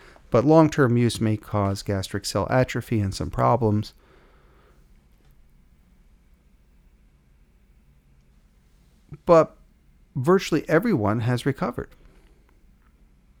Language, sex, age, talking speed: English, male, 50-69, 70 wpm